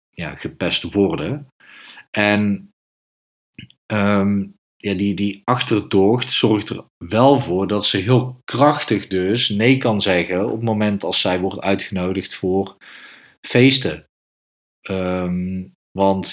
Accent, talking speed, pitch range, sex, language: Dutch, 105 wpm, 95-120 Hz, male, Dutch